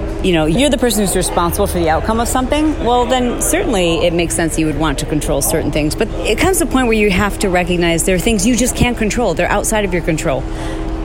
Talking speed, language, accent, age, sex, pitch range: 260 wpm, English, American, 40-59, female, 155-210 Hz